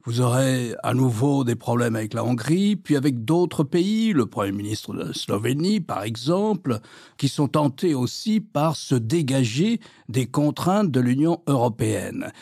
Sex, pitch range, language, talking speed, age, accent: male, 125-175 Hz, French, 155 wpm, 60-79, French